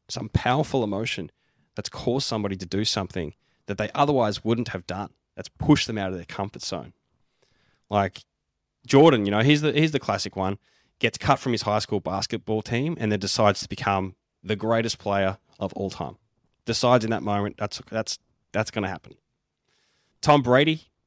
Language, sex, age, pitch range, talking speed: English, male, 10-29, 100-125 Hz, 180 wpm